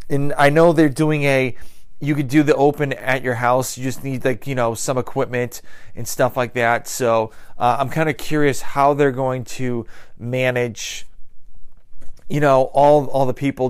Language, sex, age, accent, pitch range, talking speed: English, male, 30-49, American, 120-145 Hz, 190 wpm